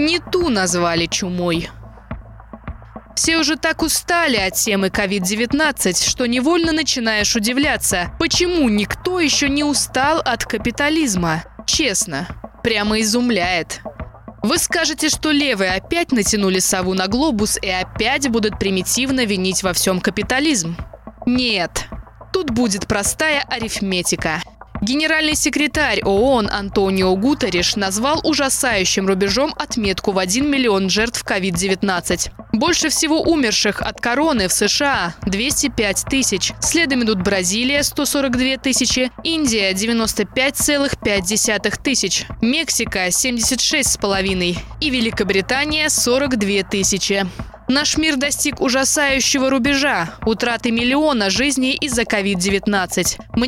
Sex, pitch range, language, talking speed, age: female, 195-280 Hz, Russian, 115 wpm, 20-39